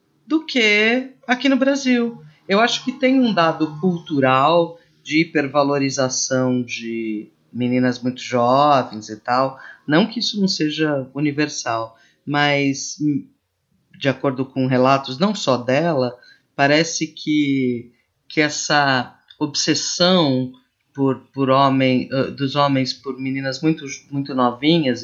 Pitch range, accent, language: 130-165 Hz, Brazilian, Portuguese